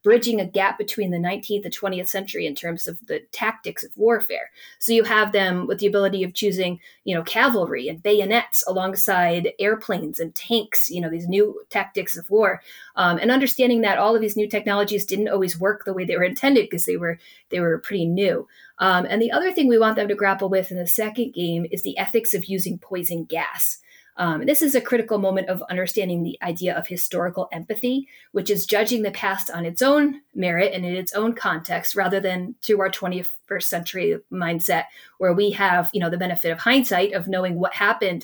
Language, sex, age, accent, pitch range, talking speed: English, female, 30-49, American, 180-215 Hz, 210 wpm